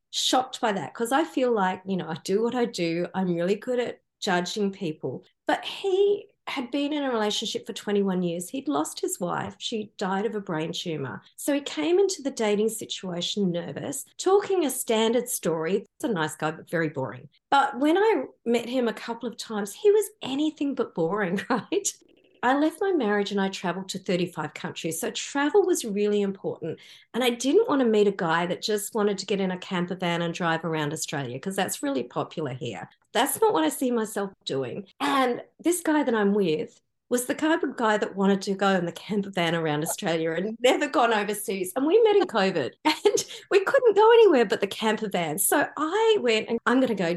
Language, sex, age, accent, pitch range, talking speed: English, female, 40-59, Australian, 185-290 Hz, 215 wpm